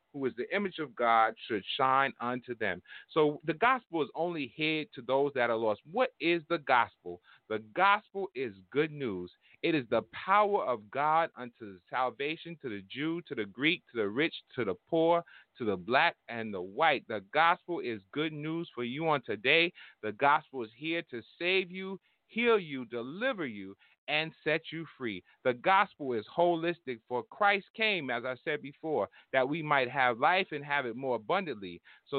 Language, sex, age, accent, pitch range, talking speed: English, male, 30-49, American, 125-170 Hz, 190 wpm